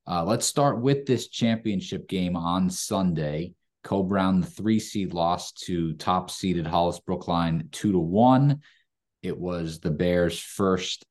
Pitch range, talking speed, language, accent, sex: 80-95 Hz, 150 wpm, English, American, male